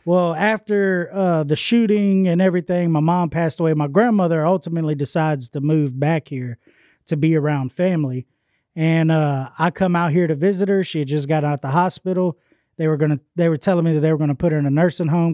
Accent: American